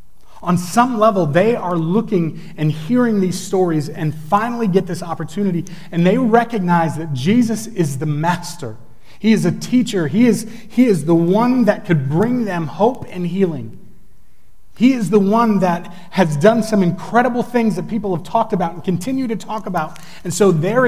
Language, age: English, 30-49